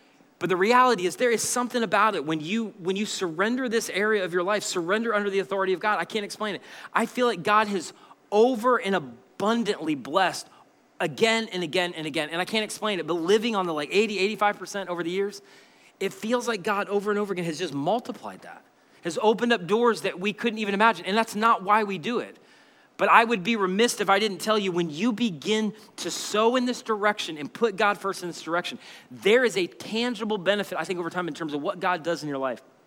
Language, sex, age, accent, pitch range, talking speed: English, male, 30-49, American, 180-230 Hz, 235 wpm